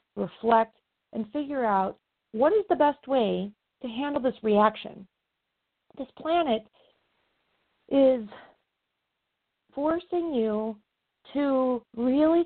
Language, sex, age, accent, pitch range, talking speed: English, female, 40-59, American, 205-260 Hz, 95 wpm